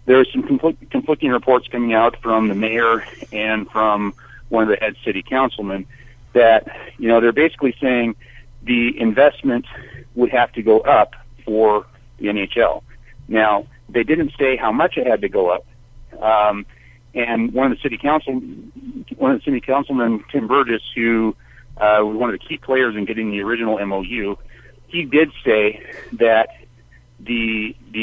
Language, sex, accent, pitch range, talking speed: English, male, American, 110-130 Hz, 155 wpm